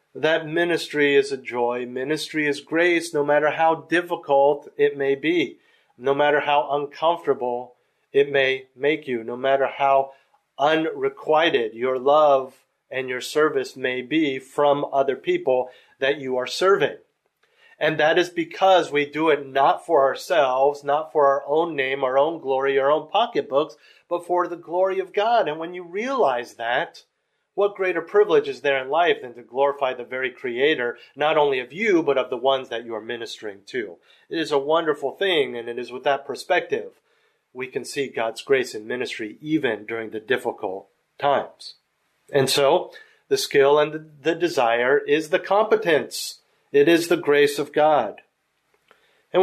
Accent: American